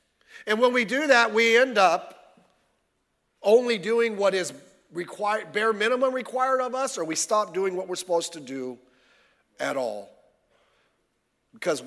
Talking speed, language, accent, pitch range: 150 wpm, English, American, 160-230 Hz